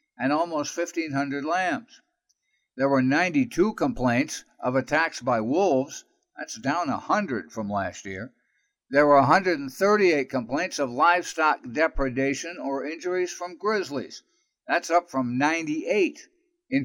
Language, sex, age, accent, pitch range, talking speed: English, male, 60-79, American, 135-185 Hz, 120 wpm